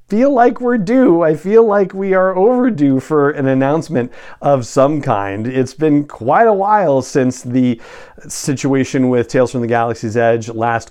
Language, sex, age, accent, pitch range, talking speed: English, male, 40-59, American, 120-170 Hz, 175 wpm